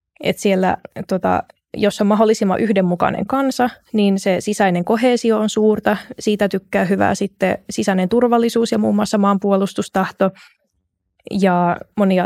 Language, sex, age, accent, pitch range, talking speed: Finnish, female, 20-39, native, 185-205 Hz, 125 wpm